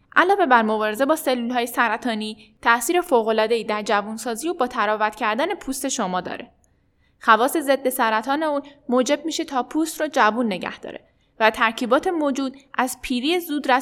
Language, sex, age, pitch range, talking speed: Persian, female, 10-29, 235-305 Hz, 155 wpm